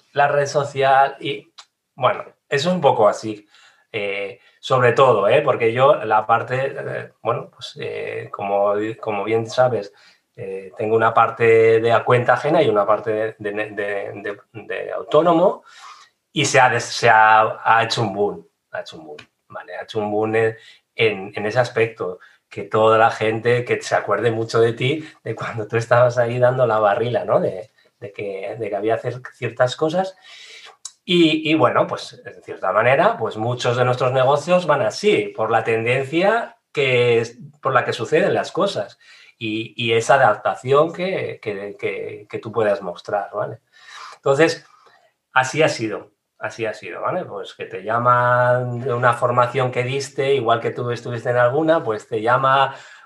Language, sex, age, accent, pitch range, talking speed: Spanish, male, 30-49, Spanish, 115-155 Hz, 175 wpm